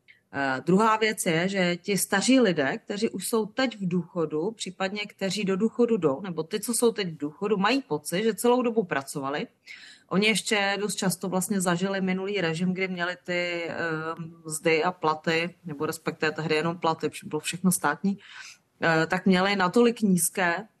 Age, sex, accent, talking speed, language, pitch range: 30-49, female, native, 175 wpm, Czech, 170-200 Hz